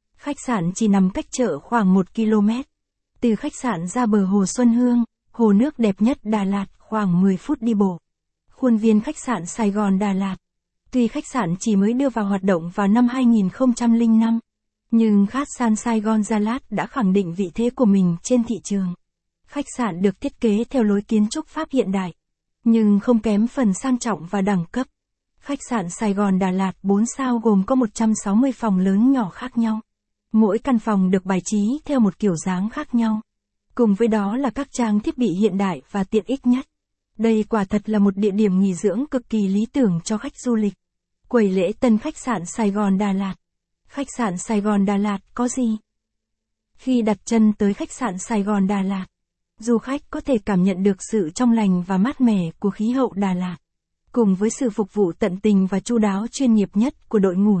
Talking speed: 215 wpm